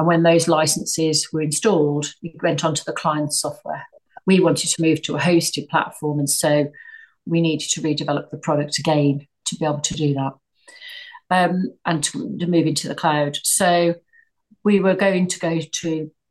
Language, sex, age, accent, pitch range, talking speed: English, female, 40-59, British, 150-180 Hz, 185 wpm